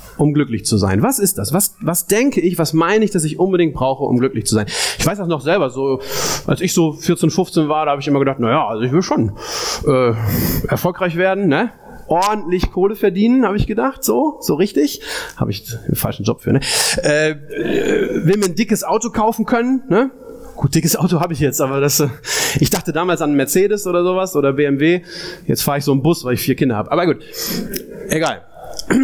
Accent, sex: German, male